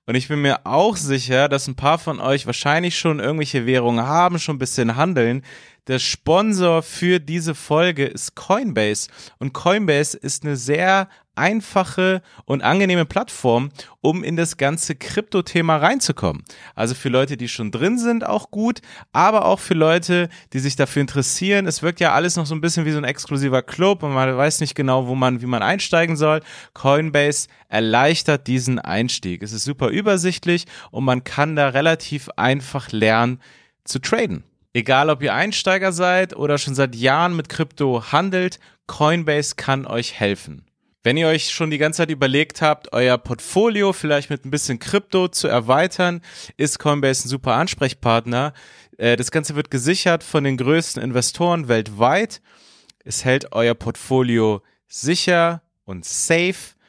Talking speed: 165 wpm